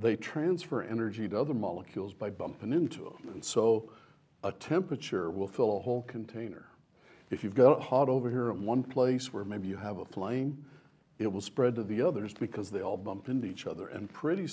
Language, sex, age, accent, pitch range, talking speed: English, male, 60-79, American, 105-140 Hz, 205 wpm